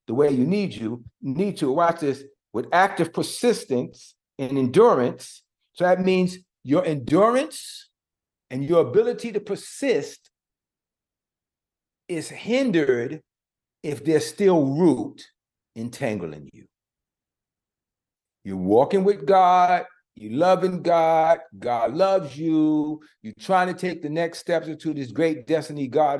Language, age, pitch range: English, 50-69, 130-185 Hz